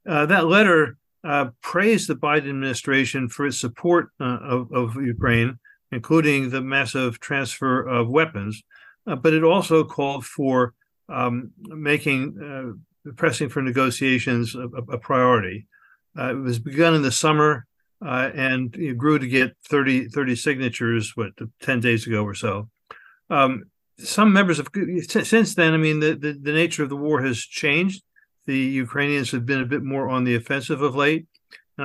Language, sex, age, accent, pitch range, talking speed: English, male, 50-69, American, 125-155 Hz, 165 wpm